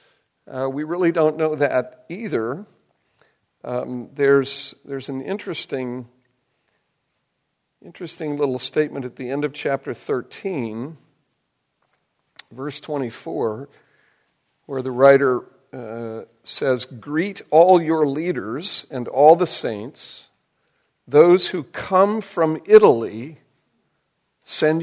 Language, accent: English, American